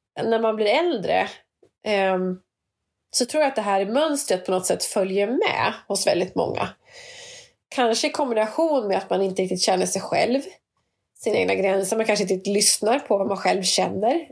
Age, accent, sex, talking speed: 30-49, native, female, 180 wpm